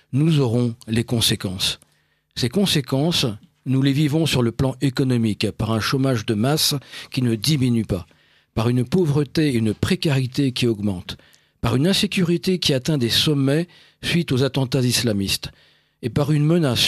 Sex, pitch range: male, 120-155 Hz